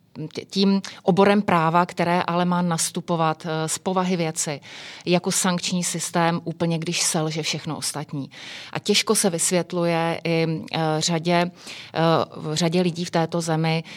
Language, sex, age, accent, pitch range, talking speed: Czech, female, 30-49, native, 160-180 Hz, 125 wpm